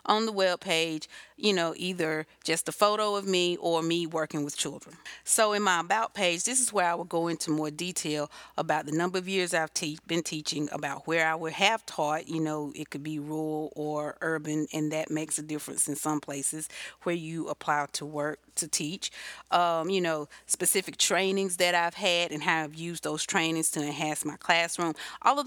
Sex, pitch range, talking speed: female, 155-190 Hz, 205 wpm